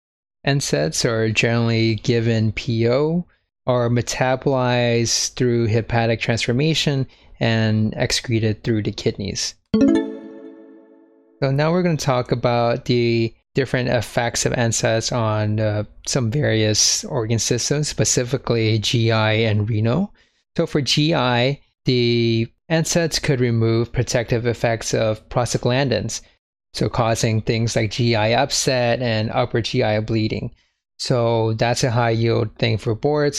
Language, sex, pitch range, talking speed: English, male, 115-130 Hz, 120 wpm